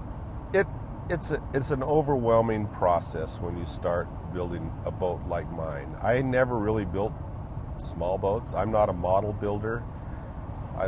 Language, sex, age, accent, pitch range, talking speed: English, male, 50-69, American, 95-115 Hz, 140 wpm